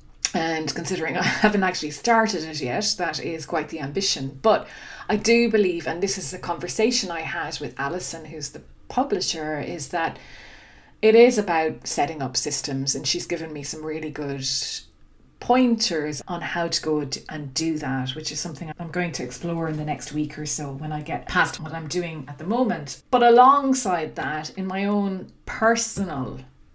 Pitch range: 150-205 Hz